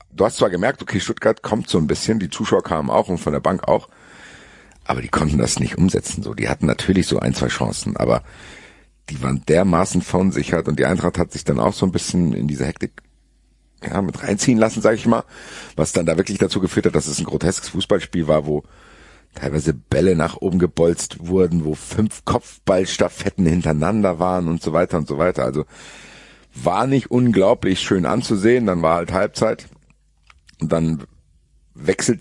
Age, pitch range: 50-69, 80-110 Hz